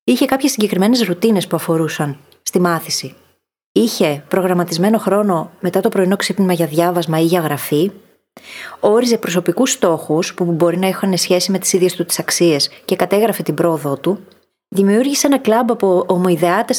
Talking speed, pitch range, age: 155 wpm, 170-220 Hz, 30-49